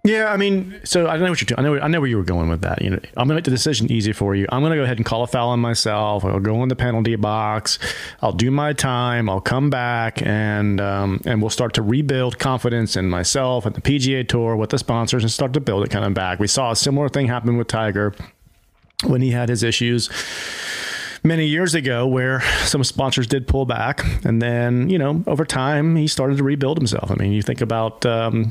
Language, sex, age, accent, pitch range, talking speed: English, male, 40-59, American, 110-145 Hz, 245 wpm